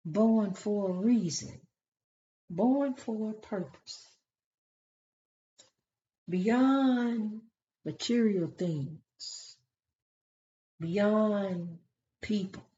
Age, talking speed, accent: 60-79, 60 wpm, American